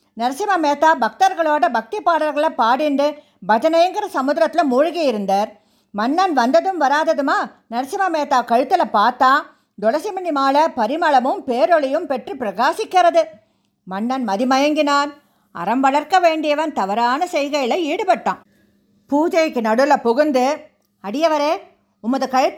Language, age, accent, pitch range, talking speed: English, 50-69, Indian, 250-330 Hz, 115 wpm